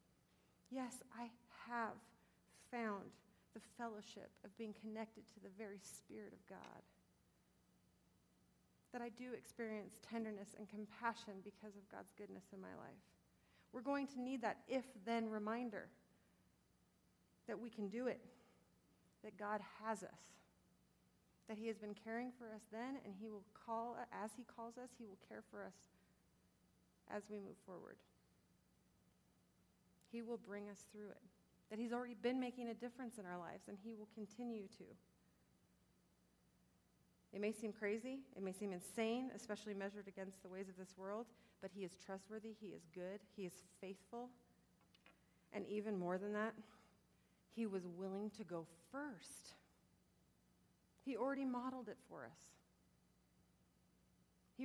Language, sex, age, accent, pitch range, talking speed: English, female, 40-59, American, 200-235 Hz, 150 wpm